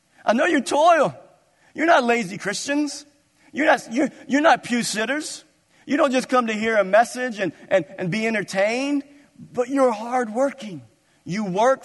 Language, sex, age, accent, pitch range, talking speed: English, male, 50-69, American, 160-235 Hz, 170 wpm